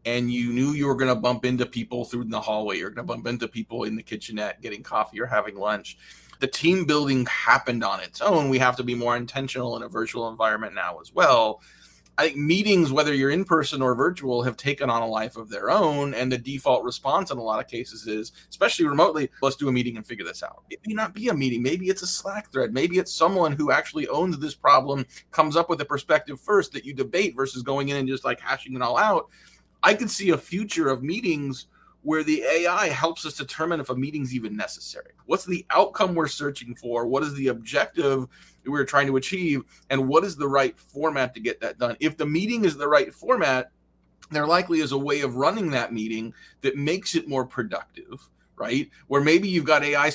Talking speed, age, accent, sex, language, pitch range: 225 wpm, 30-49, American, male, English, 125-165 Hz